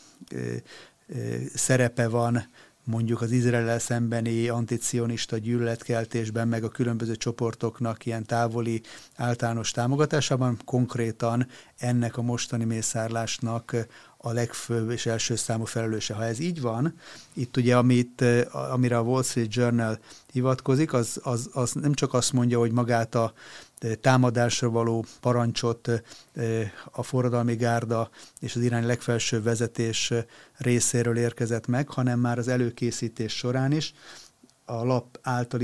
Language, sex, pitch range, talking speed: Hungarian, male, 115-125 Hz, 125 wpm